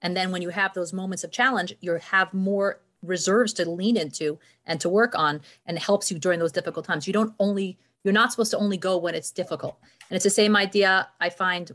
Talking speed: 240 wpm